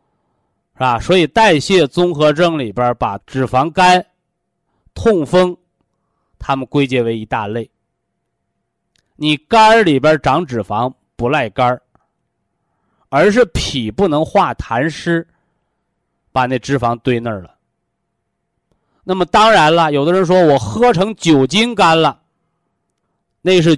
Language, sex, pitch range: Chinese, male, 130-180 Hz